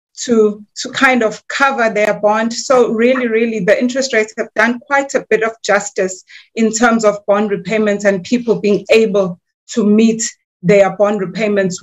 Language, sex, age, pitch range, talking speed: English, female, 30-49, 205-255 Hz, 170 wpm